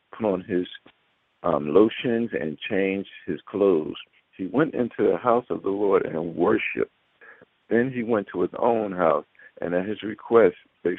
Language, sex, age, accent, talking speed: English, male, 50-69, American, 170 wpm